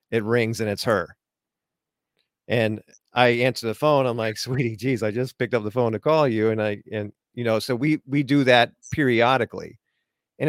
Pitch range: 115-135 Hz